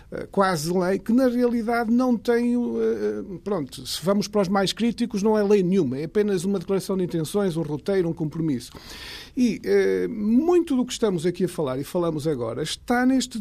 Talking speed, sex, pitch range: 185 wpm, male, 175-220 Hz